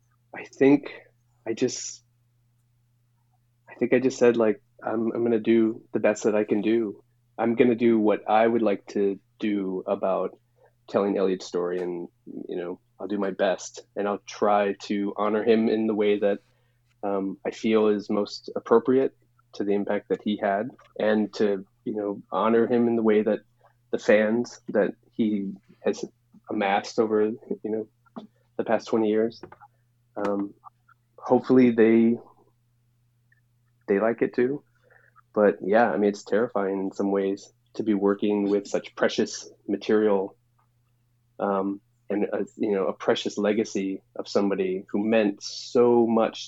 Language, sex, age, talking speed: English, male, 20-39, 160 wpm